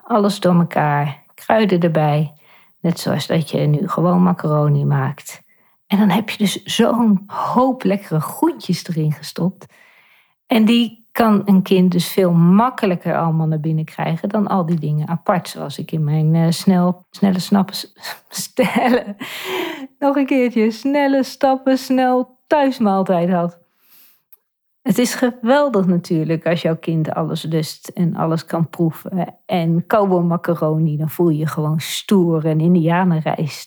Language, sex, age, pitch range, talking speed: Dutch, female, 40-59, 160-200 Hz, 145 wpm